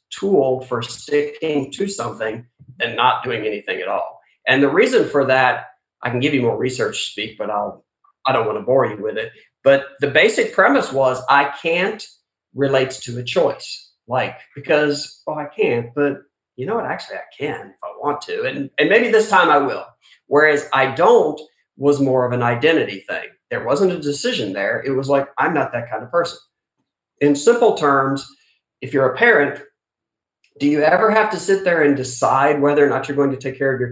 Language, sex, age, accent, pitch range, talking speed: English, male, 40-59, American, 130-155 Hz, 205 wpm